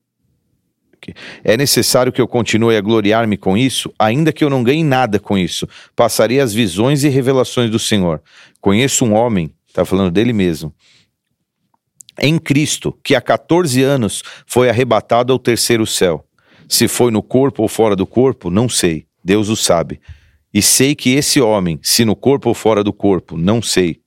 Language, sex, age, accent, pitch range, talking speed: Portuguese, male, 40-59, Brazilian, 100-130 Hz, 170 wpm